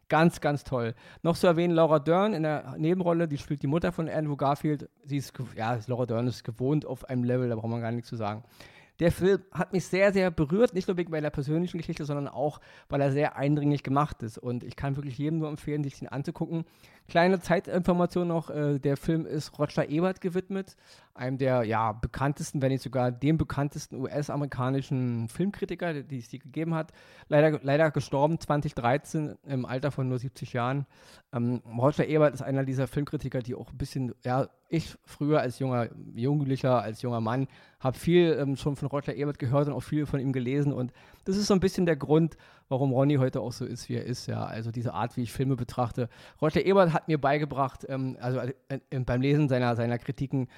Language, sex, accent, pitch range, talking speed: German, male, German, 130-155 Hz, 205 wpm